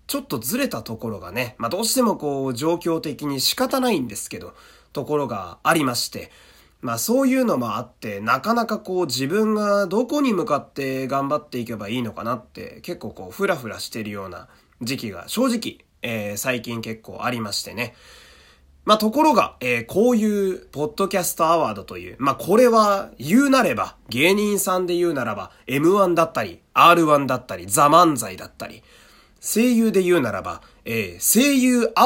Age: 30-49